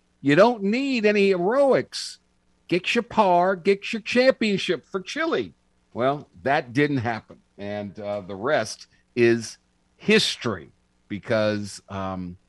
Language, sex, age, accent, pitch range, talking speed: English, male, 50-69, American, 120-175 Hz, 120 wpm